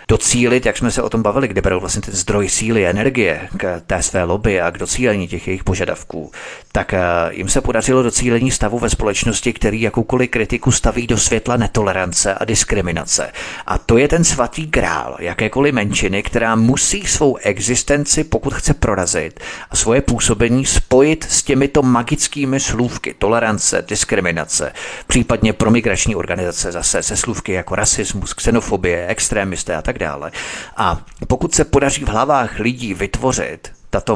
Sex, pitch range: male, 100-130 Hz